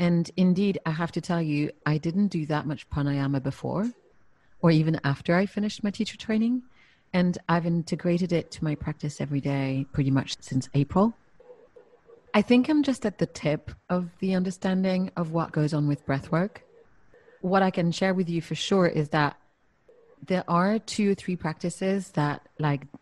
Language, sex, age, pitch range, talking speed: English, female, 30-49, 150-190 Hz, 180 wpm